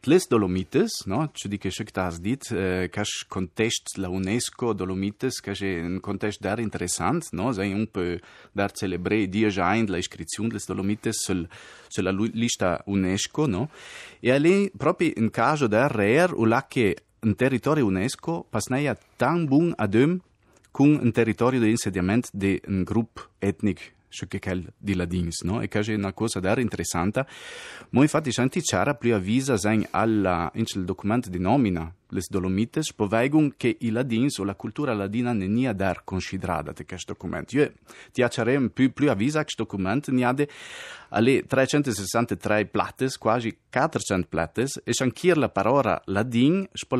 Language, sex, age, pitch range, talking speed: Italian, male, 30-49, 95-125 Hz, 160 wpm